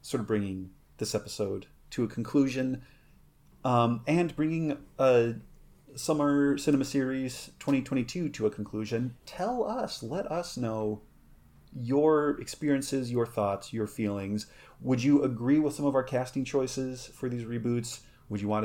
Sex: male